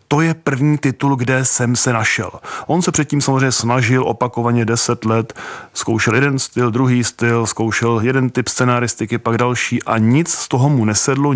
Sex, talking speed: male, 175 wpm